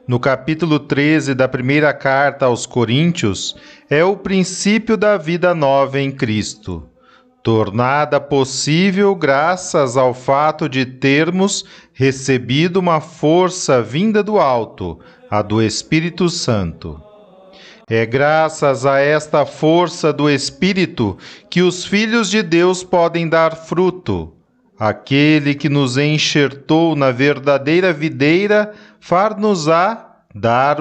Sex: male